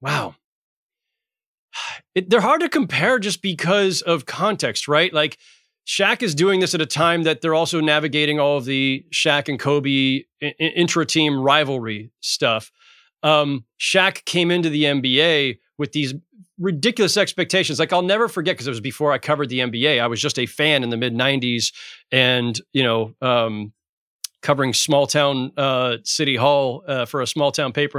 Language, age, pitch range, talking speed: English, 30-49, 135-180 Hz, 170 wpm